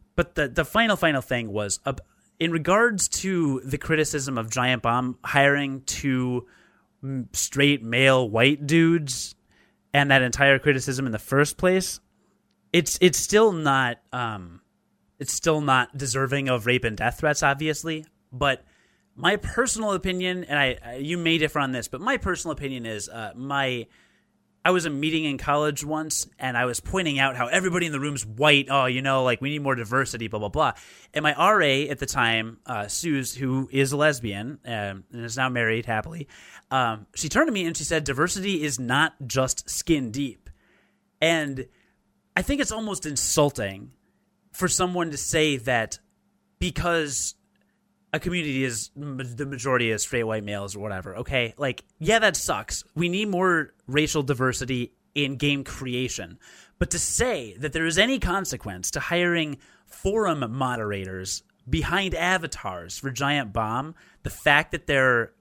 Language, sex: English, male